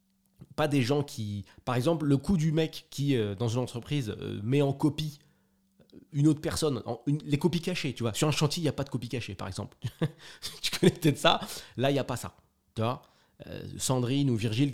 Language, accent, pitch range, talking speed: French, French, 105-145 Hz, 230 wpm